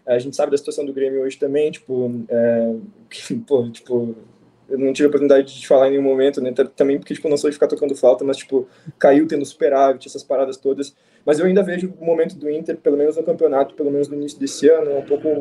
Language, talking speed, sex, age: Portuguese, 240 wpm, male, 20-39